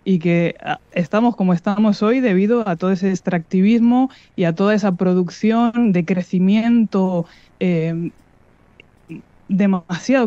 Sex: female